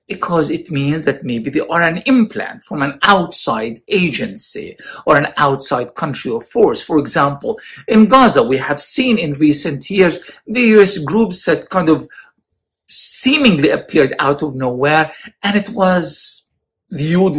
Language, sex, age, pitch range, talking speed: English, male, 50-69, 150-205 Hz, 150 wpm